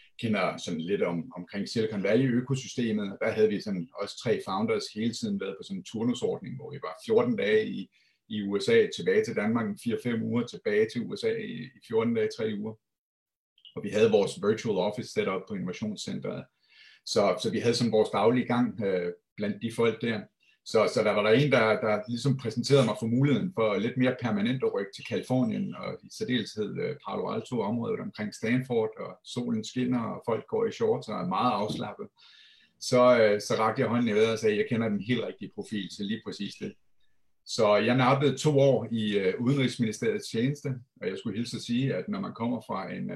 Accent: native